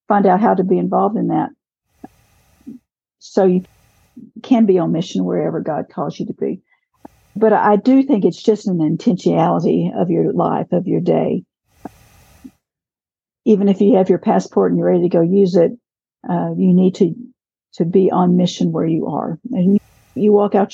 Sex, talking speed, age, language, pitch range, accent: female, 180 wpm, 50-69, English, 180-225 Hz, American